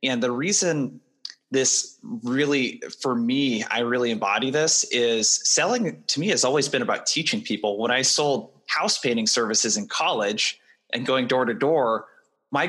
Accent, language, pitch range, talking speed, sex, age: American, English, 120-150 Hz, 165 wpm, male, 20-39